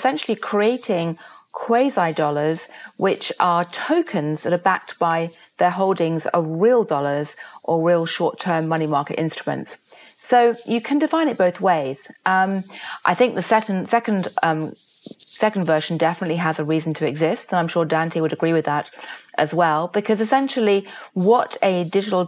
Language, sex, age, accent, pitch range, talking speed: English, female, 30-49, British, 160-215 Hz, 155 wpm